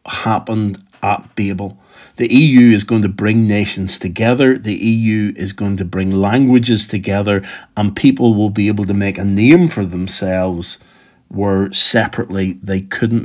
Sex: male